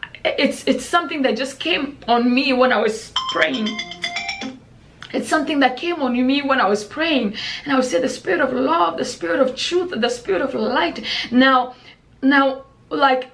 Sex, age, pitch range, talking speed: female, 20-39, 215-275 Hz, 185 wpm